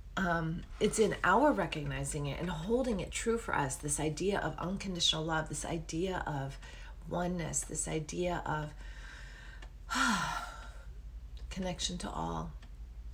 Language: English